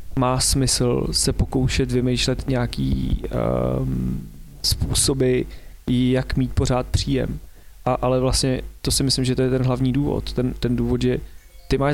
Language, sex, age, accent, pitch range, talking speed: Czech, male, 30-49, native, 110-130 Hz, 140 wpm